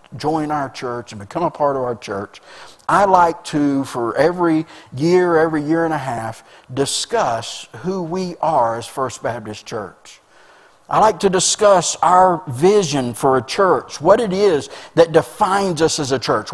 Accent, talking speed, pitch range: American, 170 wpm, 150-200 Hz